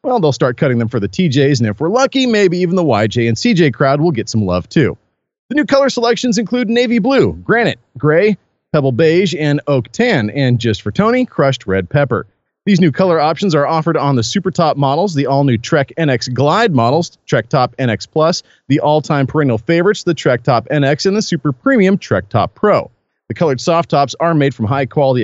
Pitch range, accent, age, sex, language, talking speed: 135-195 Hz, American, 40-59, male, English, 210 wpm